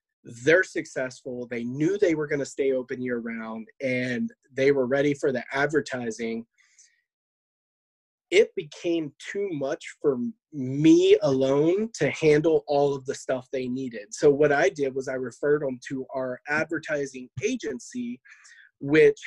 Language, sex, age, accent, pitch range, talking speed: English, male, 30-49, American, 130-180 Hz, 145 wpm